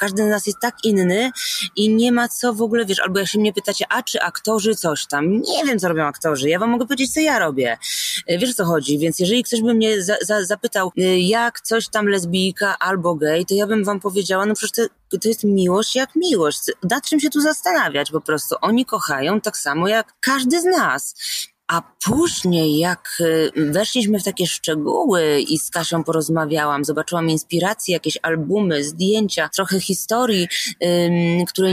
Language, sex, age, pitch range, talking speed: Polish, female, 20-39, 175-235 Hz, 185 wpm